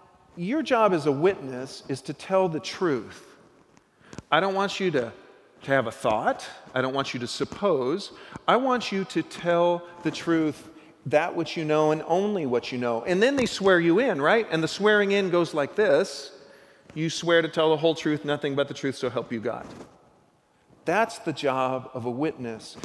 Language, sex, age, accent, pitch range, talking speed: English, male, 40-59, American, 145-195 Hz, 195 wpm